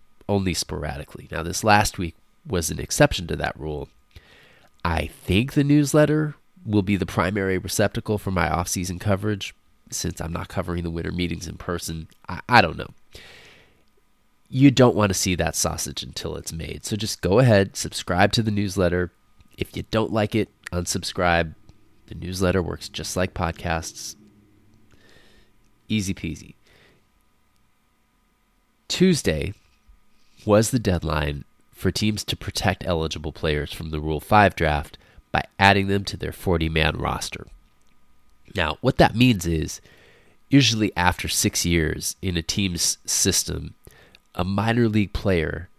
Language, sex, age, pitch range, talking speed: English, male, 20-39, 80-105 Hz, 145 wpm